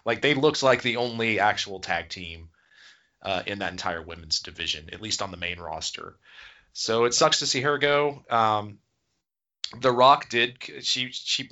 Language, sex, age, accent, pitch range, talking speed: English, male, 30-49, American, 100-125 Hz, 175 wpm